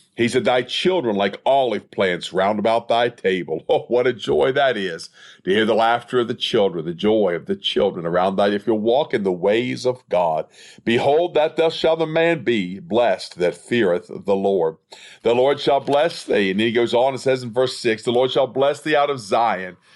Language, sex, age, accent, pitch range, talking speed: English, male, 50-69, American, 115-150 Hz, 220 wpm